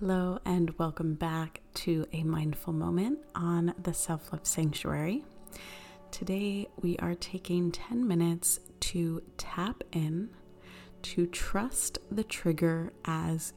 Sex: female